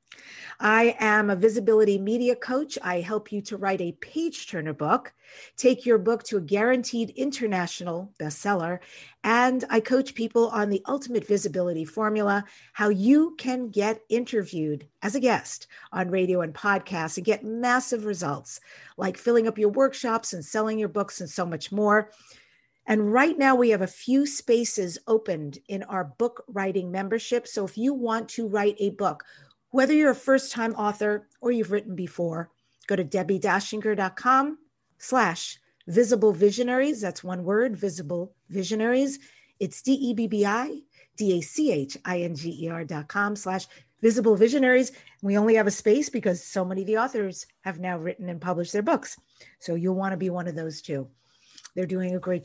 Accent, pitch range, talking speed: American, 180-230 Hz, 160 wpm